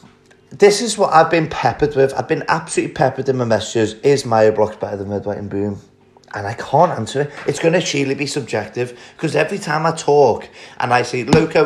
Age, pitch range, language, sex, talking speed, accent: 30-49, 110-140 Hz, English, male, 215 wpm, British